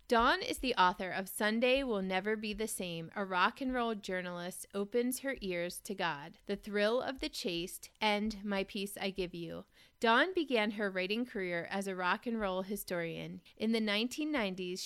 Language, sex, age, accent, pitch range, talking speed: English, female, 30-49, American, 185-225 Hz, 185 wpm